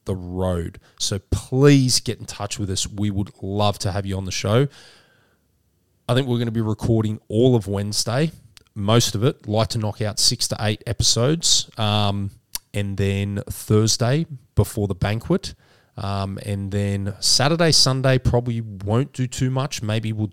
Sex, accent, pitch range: male, Australian, 100-120 Hz